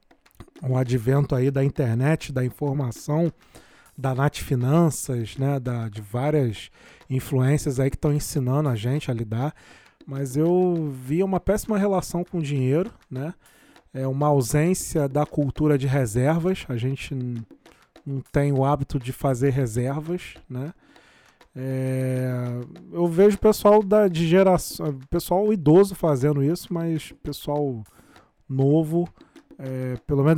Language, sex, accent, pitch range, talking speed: Portuguese, male, Brazilian, 130-155 Hz, 135 wpm